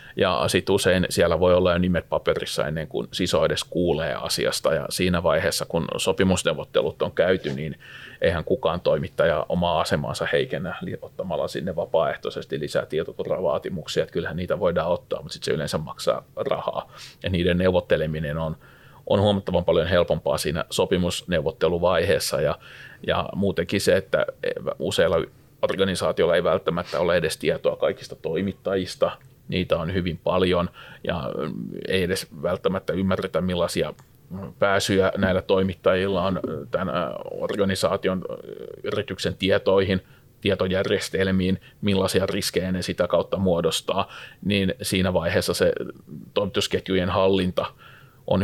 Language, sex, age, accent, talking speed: Finnish, male, 30-49, native, 125 wpm